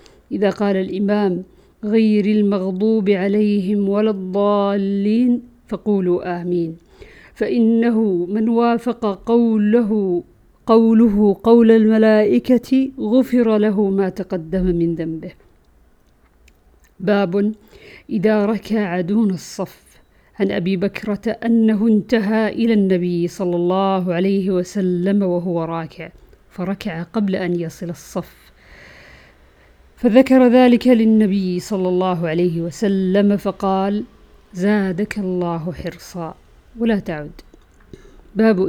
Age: 50-69